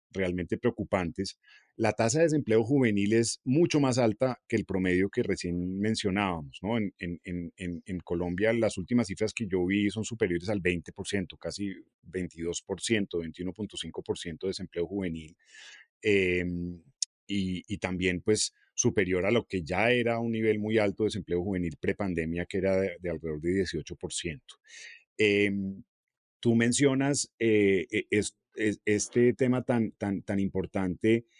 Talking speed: 160 wpm